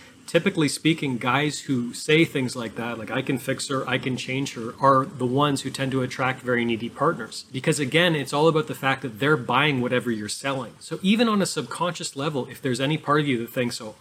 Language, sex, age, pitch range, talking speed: English, male, 30-49, 125-150 Hz, 235 wpm